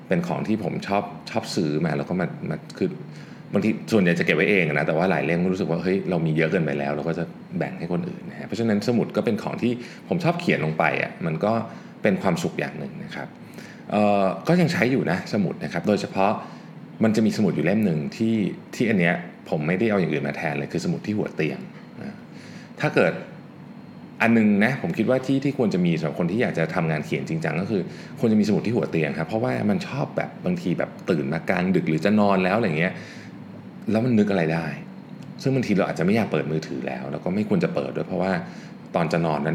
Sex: male